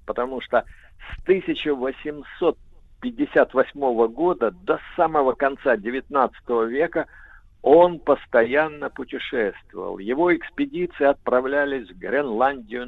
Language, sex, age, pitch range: Russian, male, 50-69, 115-165 Hz